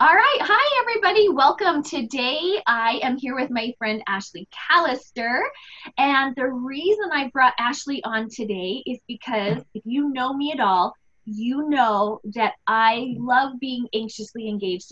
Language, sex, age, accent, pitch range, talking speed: English, female, 20-39, American, 230-300 Hz, 155 wpm